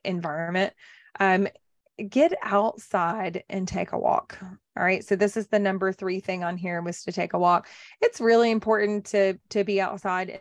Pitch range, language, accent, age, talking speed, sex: 180-205 Hz, English, American, 20-39, 180 wpm, female